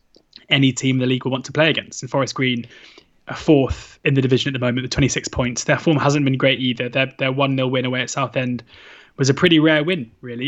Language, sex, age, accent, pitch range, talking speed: English, male, 20-39, British, 125-145 Hz, 245 wpm